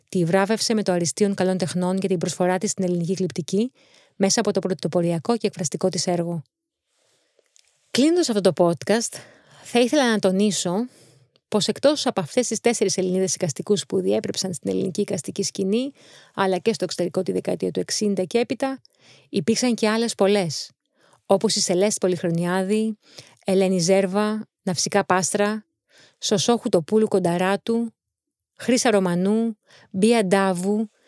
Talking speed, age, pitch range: 140 wpm, 30-49, 185-215 Hz